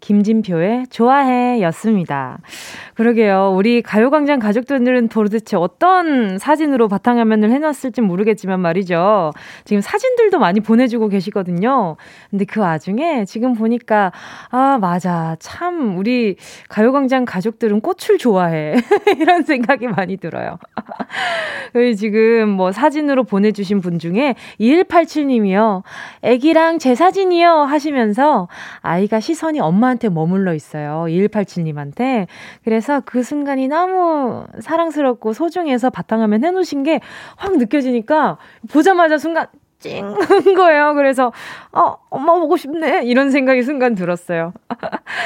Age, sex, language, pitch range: 20-39, female, Korean, 210-300 Hz